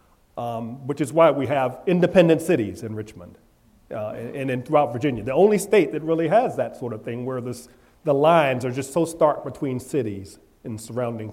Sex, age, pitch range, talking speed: male, 40-59, 120-175 Hz, 195 wpm